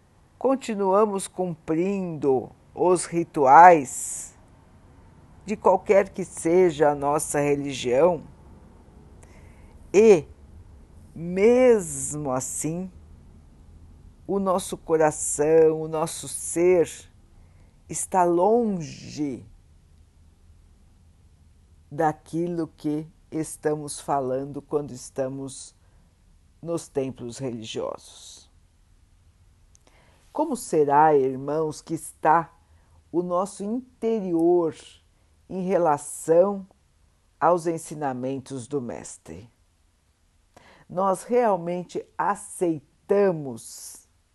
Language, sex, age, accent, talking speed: Portuguese, female, 50-69, Brazilian, 65 wpm